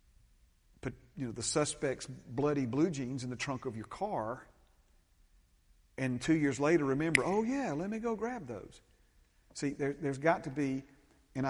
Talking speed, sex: 155 wpm, male